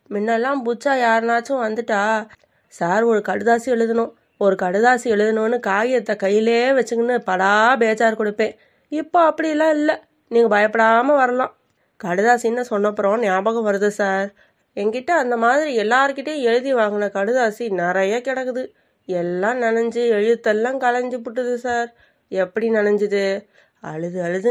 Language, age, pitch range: Tamil, 20-39, 205-255 Hz